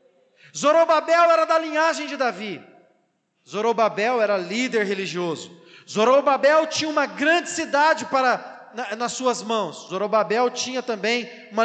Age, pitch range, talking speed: 40-59, 160-220 Hz, 115 wpm